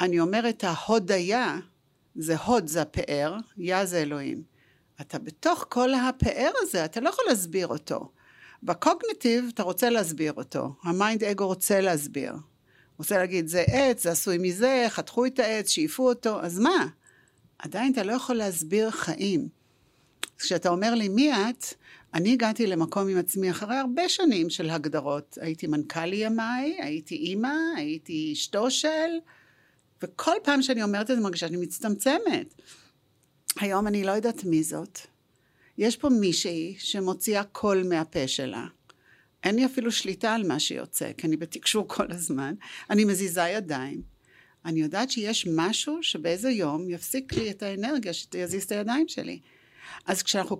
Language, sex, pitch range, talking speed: Hebrew, female, 175-250 Hz, 150 wpm